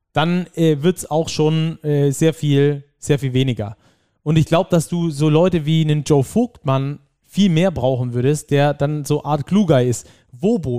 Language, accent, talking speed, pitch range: German, German, 185 wpm, 135-165 Hz